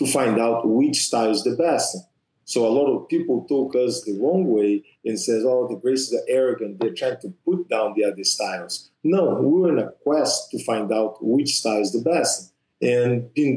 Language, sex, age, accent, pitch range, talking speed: English, male, 50-69, Brazilian, 125-145 Hz, 215 wpm